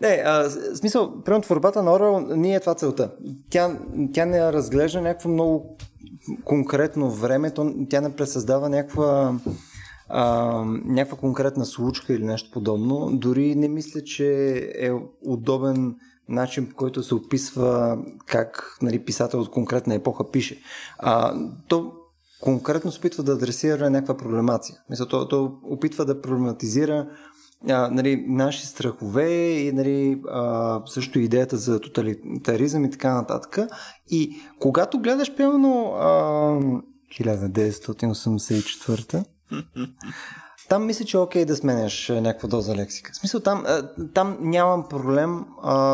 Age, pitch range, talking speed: 20-39, 125-155 Hz, 125 wpm